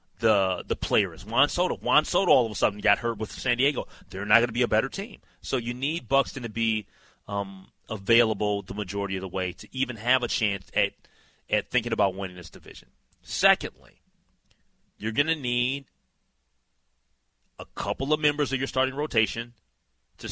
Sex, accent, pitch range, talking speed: male, American, 80-125 Hz, 185 wpm